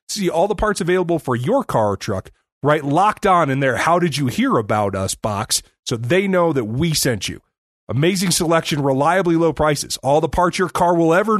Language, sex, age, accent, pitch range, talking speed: English, male, 30-49, American, 125-180 Hz, 215 wpm